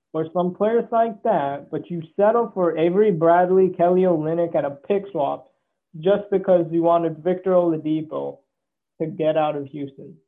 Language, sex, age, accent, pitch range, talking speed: English, male, 20-39, American, 155-190 Hz, 165 wpm